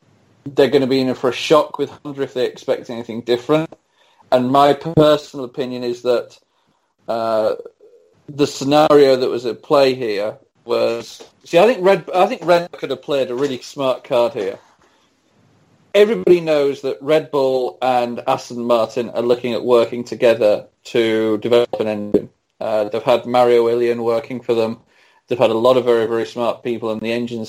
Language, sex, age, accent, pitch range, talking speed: English, male, 30-49, British, 120-155 Hz, 180 wpm